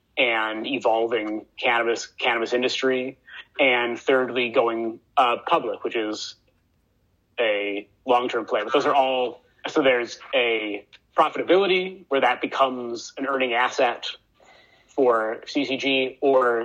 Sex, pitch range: male, 115-135 Hz